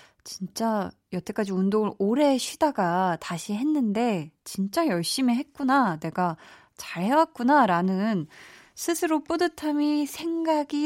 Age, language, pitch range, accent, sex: 20-39, Korean, 185-275 Hz, native, female